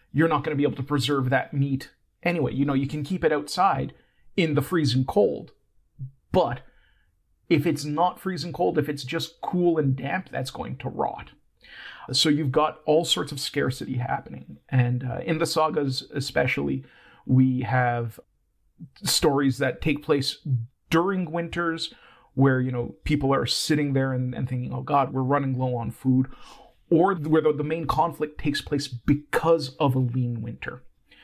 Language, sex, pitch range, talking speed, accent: English, male, 130-150 Hz, 175 wpm, American